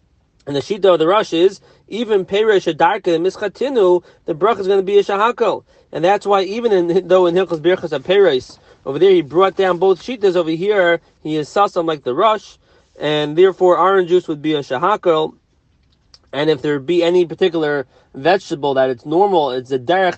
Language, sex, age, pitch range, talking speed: English, male, 30-49, 155-195 Hz, 200 wpm